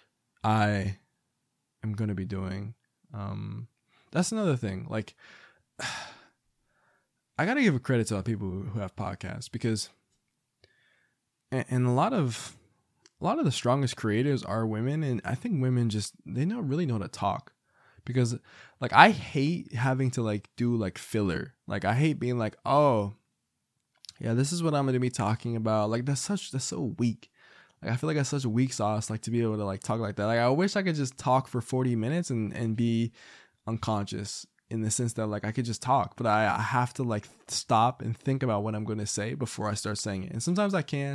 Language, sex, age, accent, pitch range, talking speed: English, male, 20-39, American, 105-130 Hz, 215 wpm